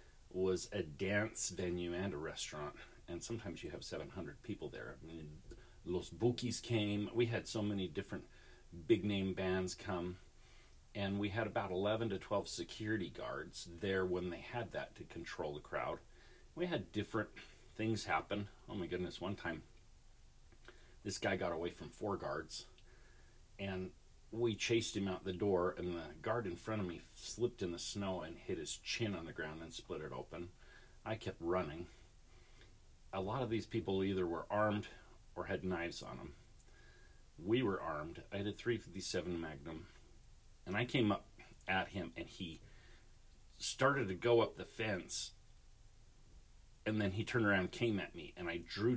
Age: 40-59